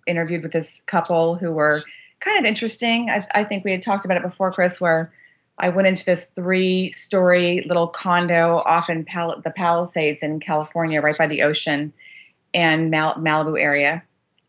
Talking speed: 170 wpm